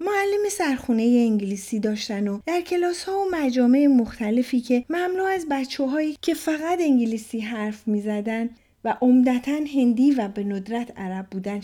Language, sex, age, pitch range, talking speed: Persian, female, 40-59, 225-325 Hz, 150 wpm